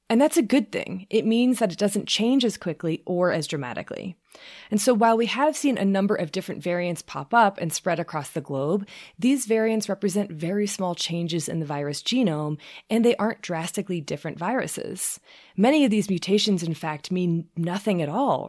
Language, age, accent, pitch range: English, 20-39, American, 160-210 Hz